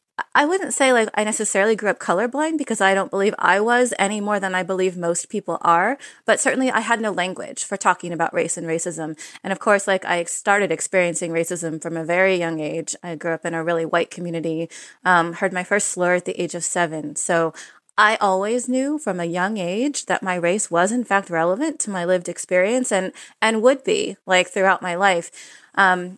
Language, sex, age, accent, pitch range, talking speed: English, female, 20-39, American, 175-210 Hz, 215 wpm